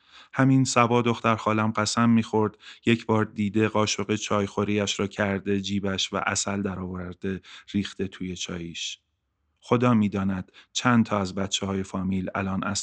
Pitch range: 95-110 Hz